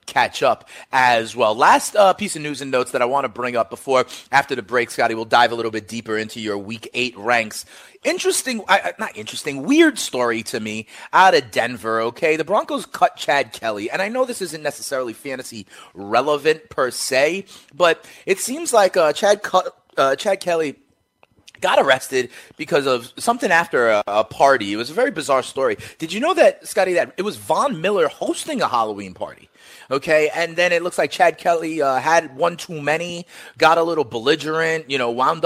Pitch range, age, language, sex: 135-205 Hz, 30-49, English, male